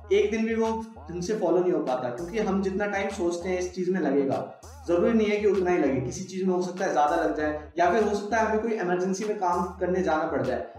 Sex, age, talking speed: male, 20-39, 265 wpm